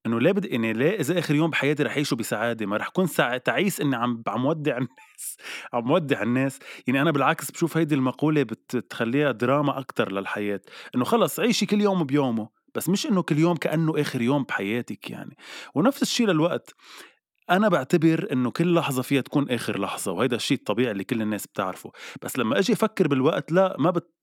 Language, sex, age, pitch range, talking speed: Arabic, male, 20-39, 115-165 Hz, 190 wpm